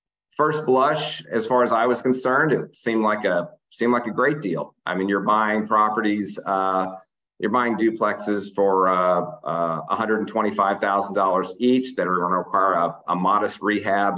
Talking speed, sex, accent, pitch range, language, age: 170 wpm, male, American, 90-105 Hz, English, 40-59